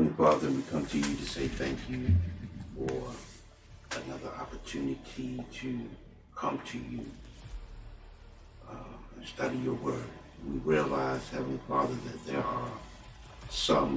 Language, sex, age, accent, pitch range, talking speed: English, male, 60-79, American, 70-85 Hz, 125 wpm